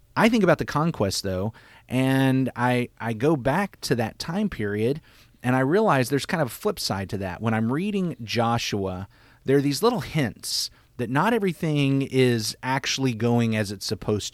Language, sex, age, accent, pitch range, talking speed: English, male, 30-49, American, 105-130 Hz, 185 wpm